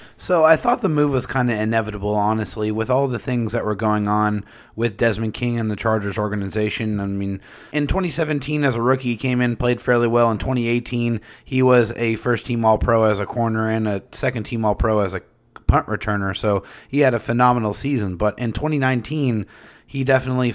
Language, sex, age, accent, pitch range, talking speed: English, male, 30-49, American, 110-125 Hz, 195 wpm